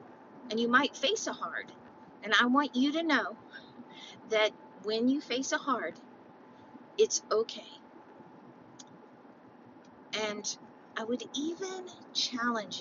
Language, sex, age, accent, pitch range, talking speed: English, female, 40-59, American, 215-280 Hz, 115 wpm